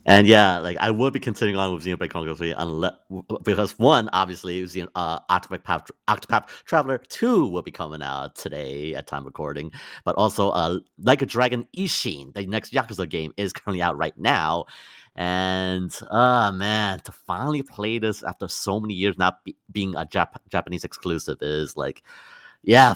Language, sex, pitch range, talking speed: English, male, 85-110 Hz, 175 wpm